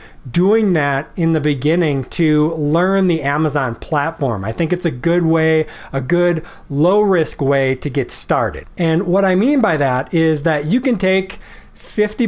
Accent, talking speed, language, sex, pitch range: American, 170 wpm, English, male, 145-185 Hz